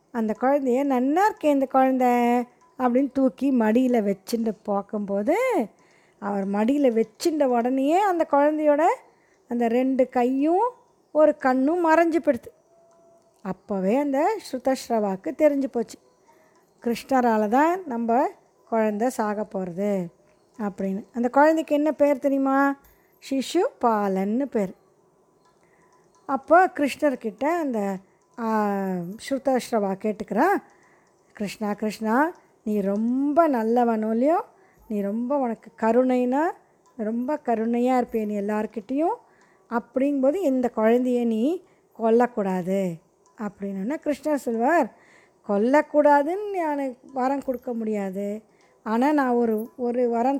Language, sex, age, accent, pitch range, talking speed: Tamil, female, 20-39, native, 215-290 Hz, 100 wpm